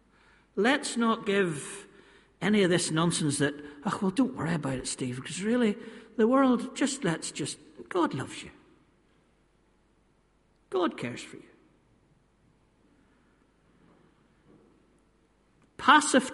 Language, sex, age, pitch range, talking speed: English, male, 60-79, 180-250 Hz, 110 wpm